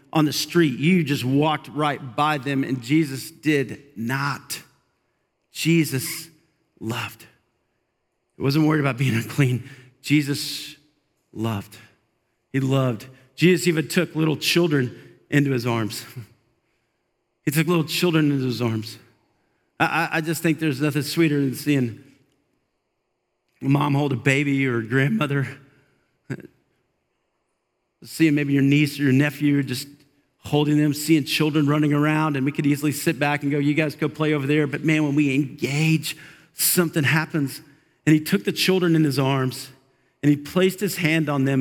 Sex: male